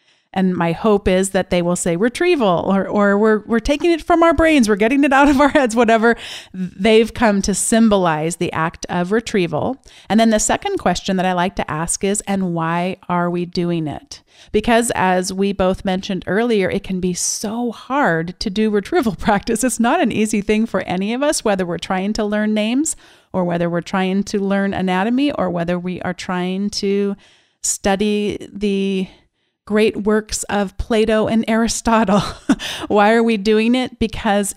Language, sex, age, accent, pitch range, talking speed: English, female, 40-59, American, 175-220 Hz, 185 wpm